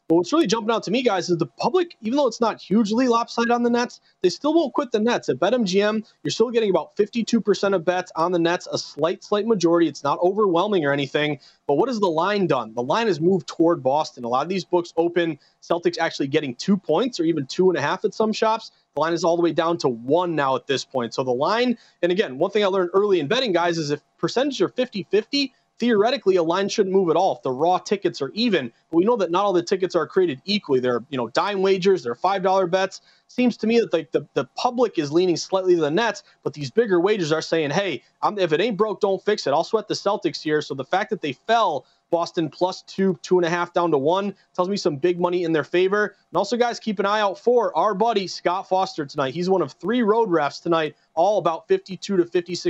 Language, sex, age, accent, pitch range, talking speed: English, male, 30-49, American, 170-220 Hz, 255 wpm